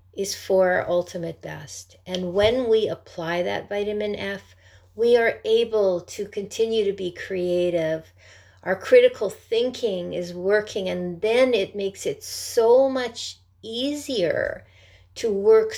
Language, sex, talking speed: English, female, 135 wpm